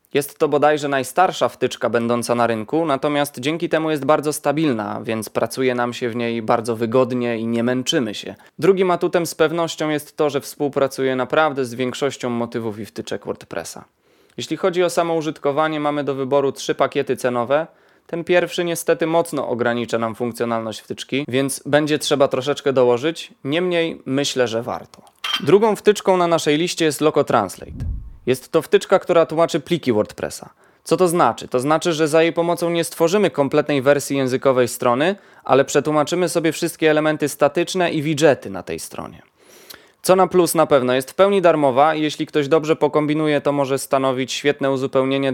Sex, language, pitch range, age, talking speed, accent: male, Polish, 125-160 Hz, 20-39, 170 wpm, native